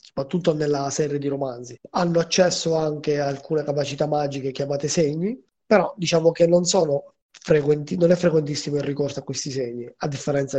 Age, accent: 20-39, native